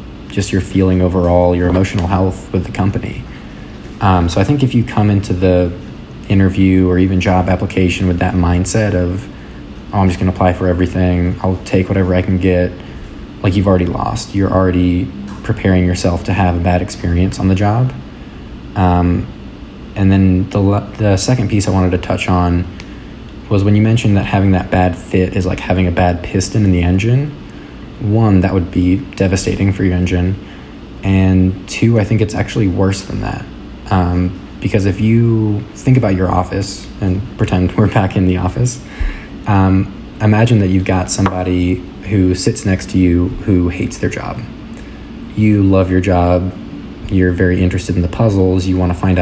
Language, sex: English, male